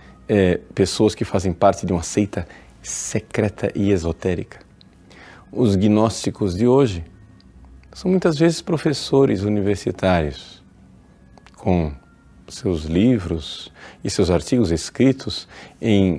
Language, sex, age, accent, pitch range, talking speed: Portuguese, male, 40-59, Brazilian, 90-120 Hz, 105 wpm